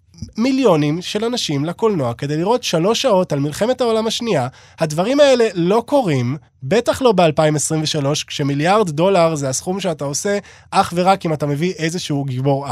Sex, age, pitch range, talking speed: male, 20-39, 140-210 Hz, 150 wpm